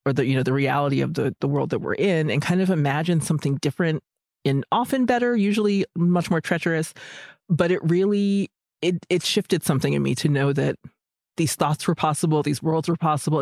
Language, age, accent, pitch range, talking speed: English, 30-49, American, 145-185 Hz, 205 wpm